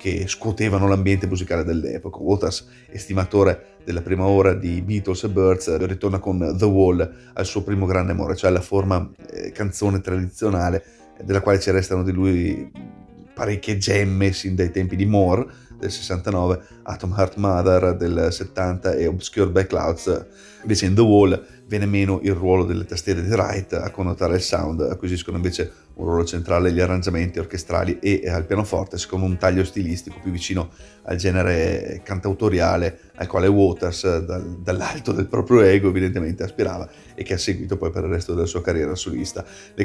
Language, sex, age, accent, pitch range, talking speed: Italian, male, 30-49, native, 90-100 Hz, 165 wpm